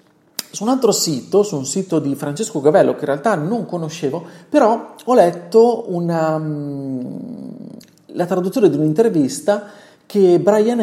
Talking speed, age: 135 wpm, 40-59